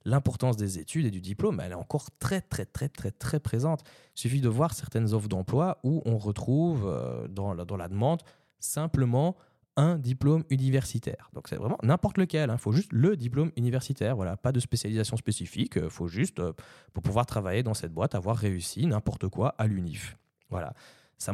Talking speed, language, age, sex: 190 wpm, French, 20-39, male